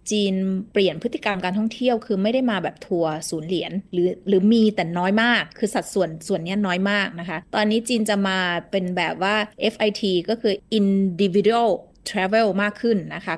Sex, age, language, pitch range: female, 20-39, Thai, 180-225 Hz